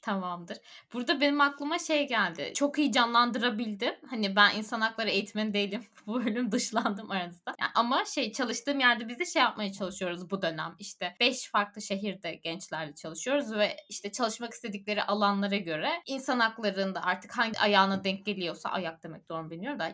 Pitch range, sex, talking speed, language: 190-260 Hz, female, 165 wpm, Turkish